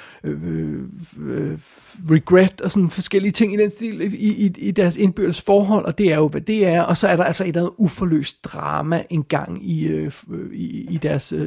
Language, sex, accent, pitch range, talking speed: Danish, male, native, 155-195 Hz, 185 wpm